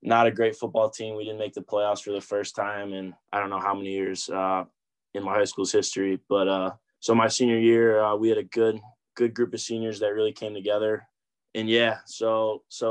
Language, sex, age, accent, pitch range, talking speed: English, male, 20-39, American, 100-115 Hz, 235 wpm